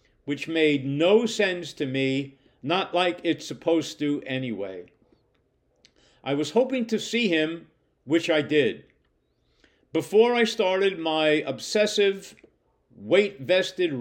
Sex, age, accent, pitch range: male, 50-69, American, 150-200 Hz